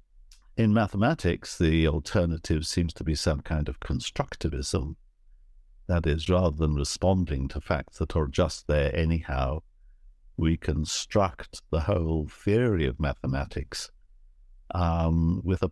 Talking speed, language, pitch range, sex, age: 125 wpm, English, 75-90 Hz, male, 60-79